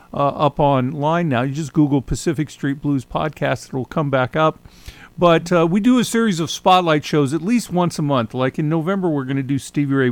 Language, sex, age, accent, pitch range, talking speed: English, male, 50-69, American, 135-180 Hz, 225 wpm